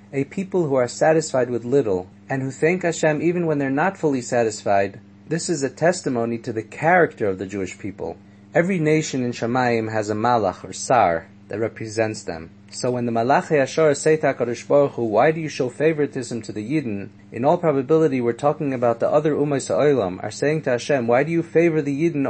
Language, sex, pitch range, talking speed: English, male, 110-160 Hz, 195 wpm